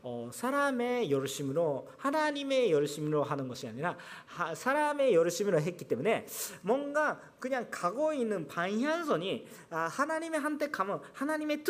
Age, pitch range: 40-59, 180-290 Hz